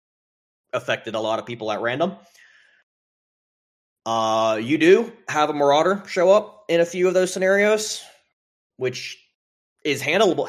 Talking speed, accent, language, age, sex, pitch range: 135 wpm, American, English, 20-39, male, 110-170 Hz